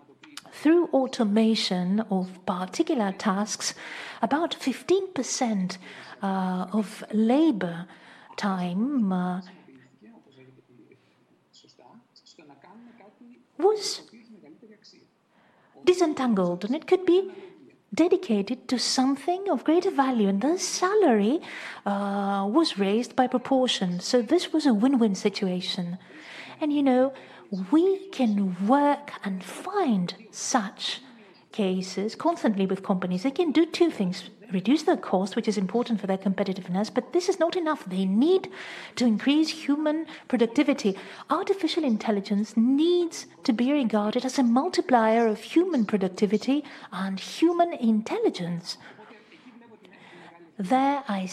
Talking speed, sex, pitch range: 110 wpm, female, 200-295 Hz